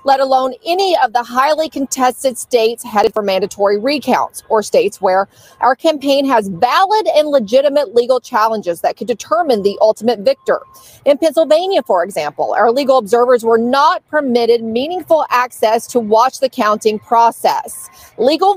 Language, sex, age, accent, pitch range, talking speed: English, female, 40-59, American, 225-285 Hz, 150 wpm